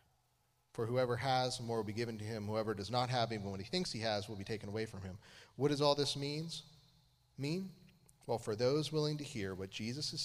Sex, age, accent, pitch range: male, 30-49, American, 115-140 Hz